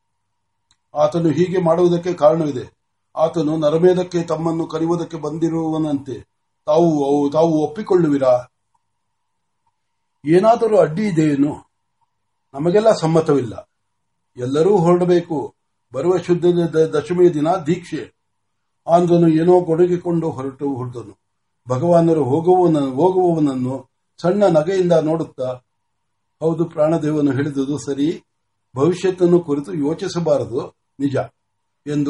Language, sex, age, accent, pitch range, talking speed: Marathi, male, 60-79, native, 140-175 Hz, 40 wpm